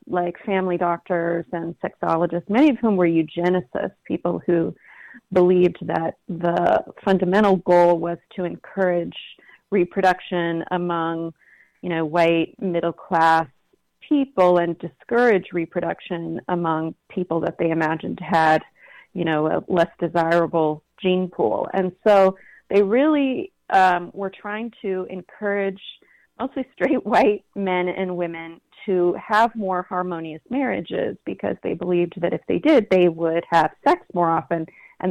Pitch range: 170-200 Hz